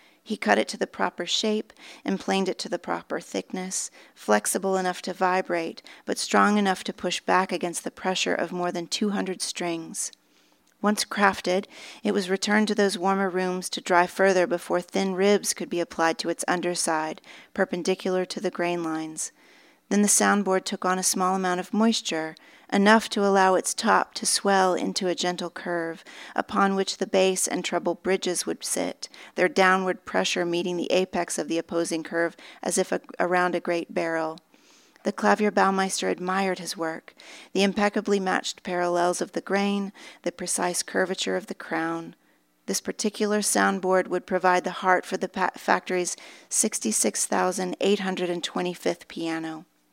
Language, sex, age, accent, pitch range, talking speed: English, female, 40-59, American, 175-195 Hz, 160 wpm